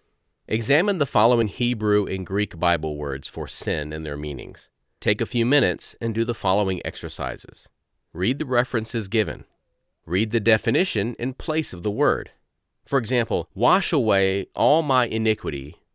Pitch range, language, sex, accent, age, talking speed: 95-120 Hz, English, male, American, 40-59, 155 wpm